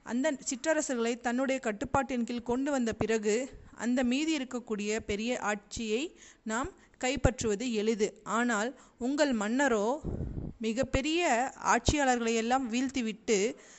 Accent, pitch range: native, 225-265 Hz